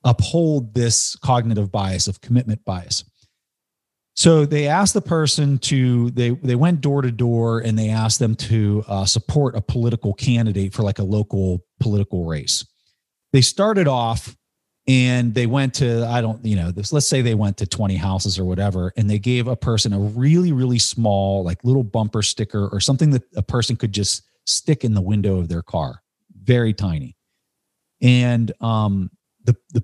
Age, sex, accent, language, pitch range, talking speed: 40-59, male, American, English, 100-130 Hz, 180 wpm